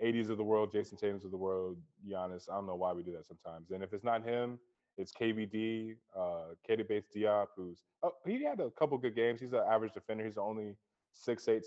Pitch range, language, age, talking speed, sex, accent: 100-110 Hz, English, 20-39, 240 wpm, male, American